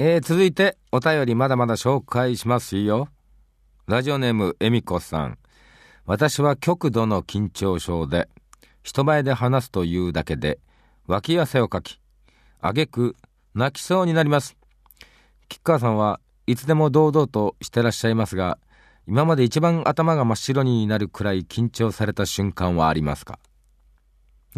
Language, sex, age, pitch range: Japanese, male, 40-59, 90-150 Hz